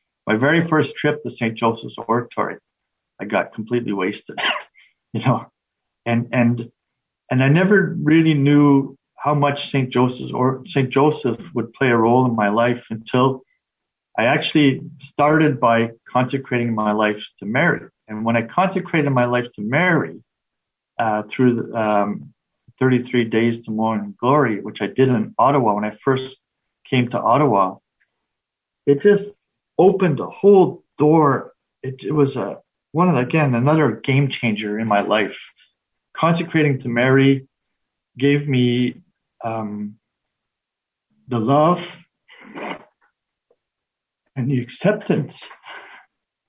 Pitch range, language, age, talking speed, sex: 115-150 Hz, English, 50-69, 130 wpm, male